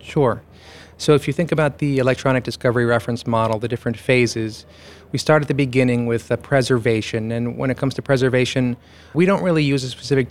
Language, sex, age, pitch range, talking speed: English, male, 30-49, 115-130 Hz, 200 wpm